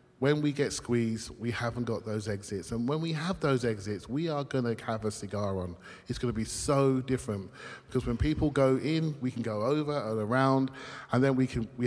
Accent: British